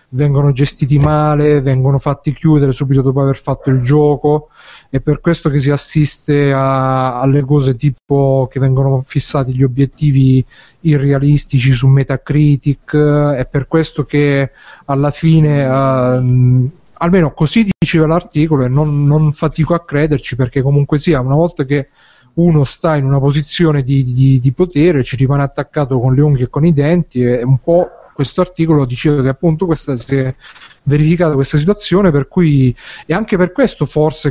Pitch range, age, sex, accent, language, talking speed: 135-155 Hz, 30-49, male, native, Italian, 160 wpm